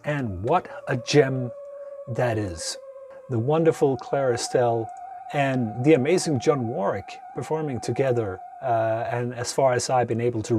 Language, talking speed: English, 140 wpm